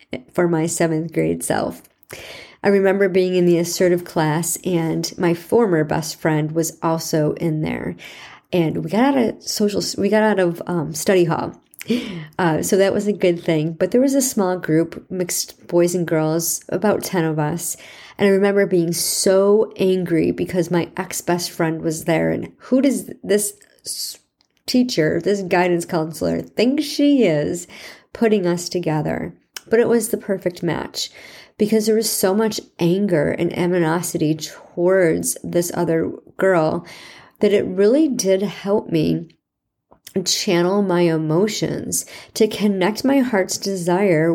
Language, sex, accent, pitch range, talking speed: English, male, American, 165-205 Hz, 155 wpm